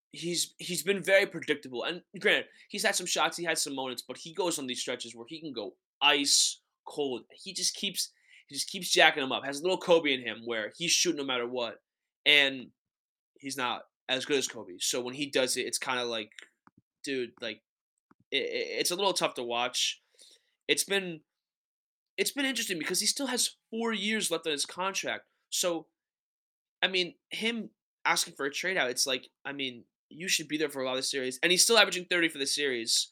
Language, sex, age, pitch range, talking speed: English, male, 20-39, 125-180 Hz, 215 wpm